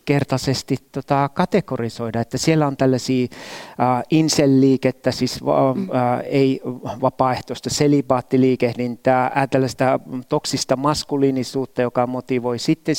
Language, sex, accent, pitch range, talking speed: Finnish, male, native, 125-155 Hz, 100 wpm